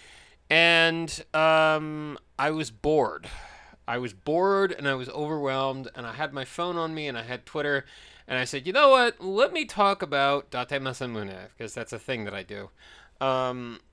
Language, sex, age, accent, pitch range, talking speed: English, male, 30-49, American, 115-160 Hz, 185 wpm